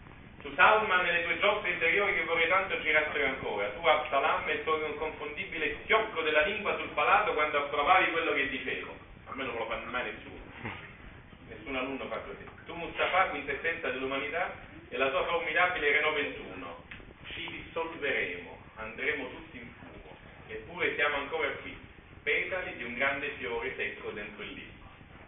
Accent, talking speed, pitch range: native, 160 wpm, 130-170 Hz